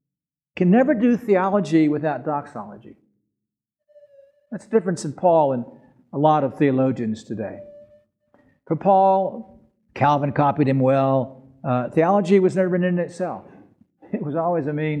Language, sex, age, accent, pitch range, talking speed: English, male, 60-79, American, 135-195 Hz, 140 wpm